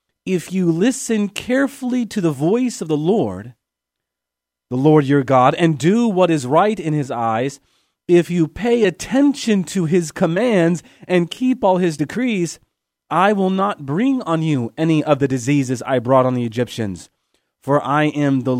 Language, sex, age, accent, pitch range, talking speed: English, male, 30-49, American, 135-185 Hz, 170 wpm